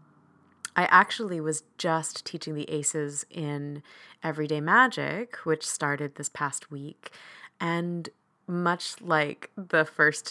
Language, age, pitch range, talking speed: English, 30-49, 150-195 Hz, 115 wpm